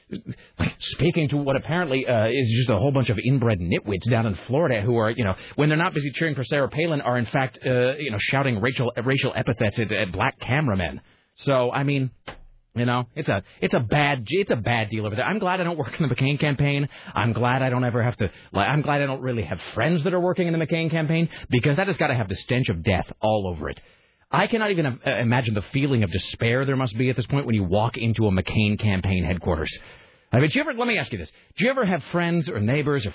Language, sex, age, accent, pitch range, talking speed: English, male, 30-49, American, 105-140 Hz, 255 wpm